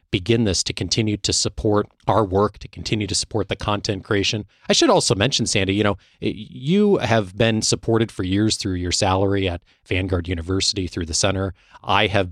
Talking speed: 190 wpm